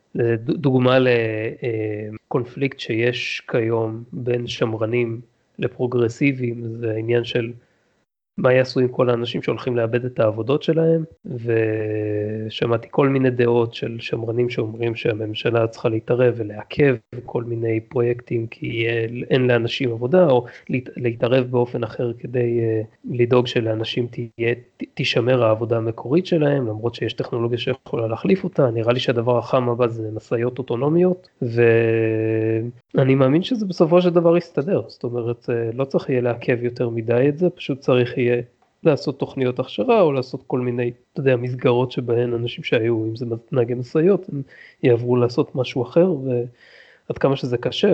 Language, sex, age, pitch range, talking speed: Hebrew, male, 30-49, 115-130 Hz, 140 wpm